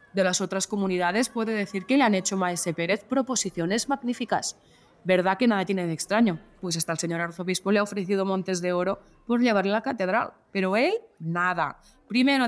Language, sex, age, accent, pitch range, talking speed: Spanish, female, 20-39, Spanish, 185-245 Hz, 190 wpm